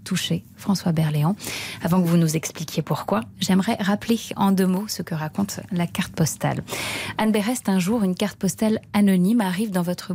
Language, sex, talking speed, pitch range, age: French, female, 185 wpm, 170-210 Hz, 20-39